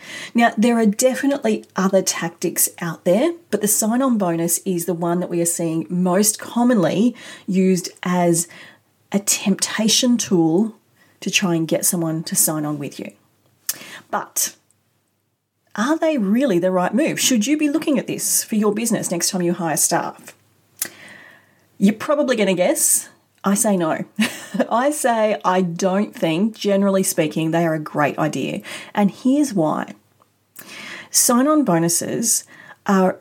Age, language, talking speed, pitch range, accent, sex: 30-49, English, 150 wpm, 175-230 Hz, Australian, female